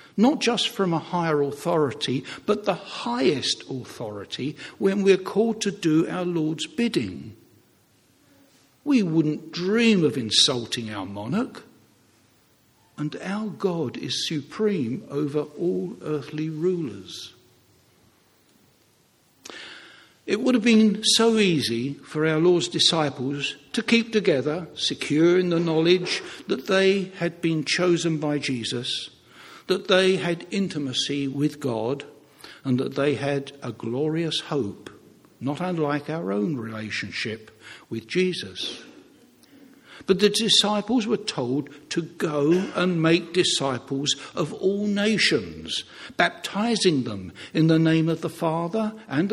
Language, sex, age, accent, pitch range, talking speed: English, male, 60-79, British, 145-195 Hz, 120 wpm